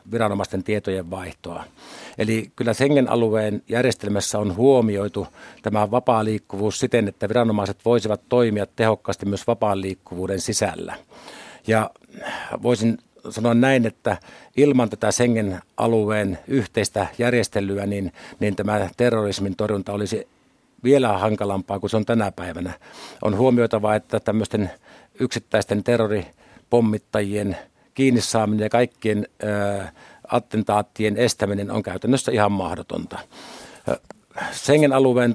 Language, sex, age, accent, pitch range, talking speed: Finnish, male, 50-69, native, 105-120 Hz, 105 wpm